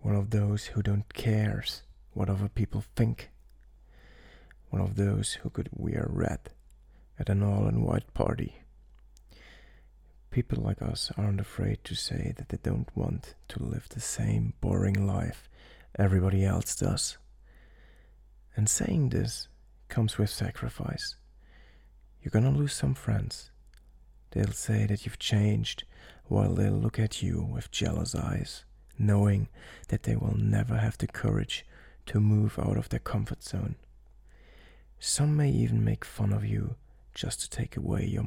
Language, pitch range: English, 65-110 Hz